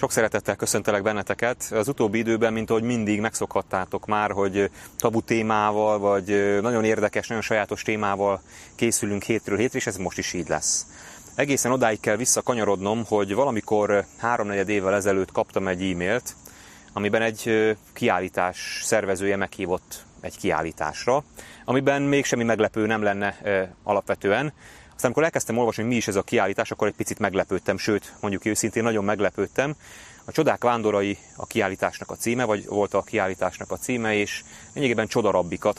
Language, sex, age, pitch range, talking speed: Hungarian, male, 30-49, 100-115 Hz, 150 wpm